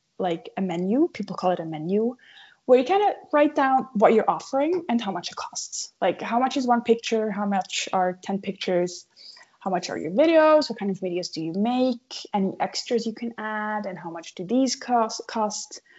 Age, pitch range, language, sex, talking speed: 20-39, 195-265 Hz, English, female, 220 wpm